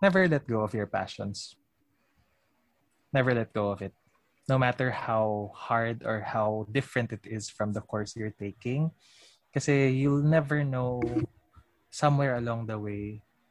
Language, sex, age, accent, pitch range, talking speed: Filipino, male, 20-39, native, 105-130 Hz, 145 wpm